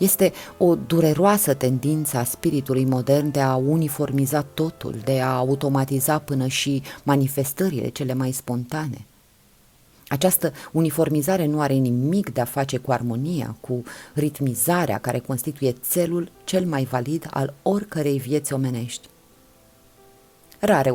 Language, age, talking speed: Romanian, 30-49, 125 wpm